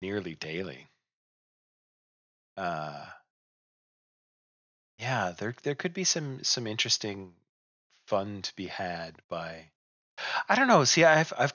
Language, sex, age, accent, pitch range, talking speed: English, male, 30-49, American, 85-115 Hz, 115 wpm